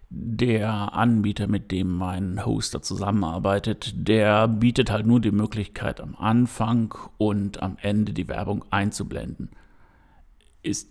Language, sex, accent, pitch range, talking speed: German, male, German, 100-120 Hz, 120 wpm